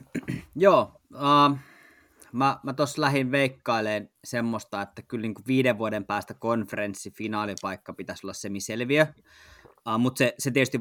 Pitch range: 110-130 Hz